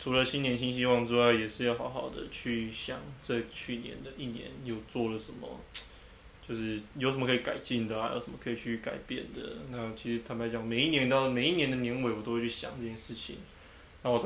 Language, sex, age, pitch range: Chinese, male, 20-39, 115-130 Hz